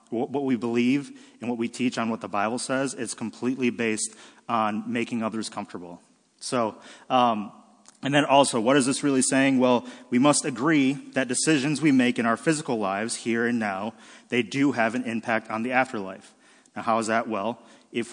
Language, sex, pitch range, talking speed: English, male, 110-130 Hz, 190 wpm